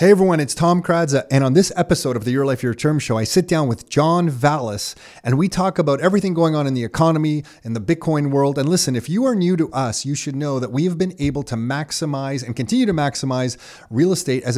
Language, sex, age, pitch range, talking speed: English, male, 30-49, 120-150 Hz, 245 wpm